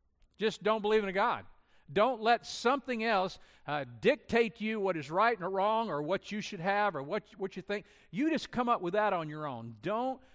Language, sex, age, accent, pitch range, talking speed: English, male, 50-69, American, 160-225 Hz, 220 wpm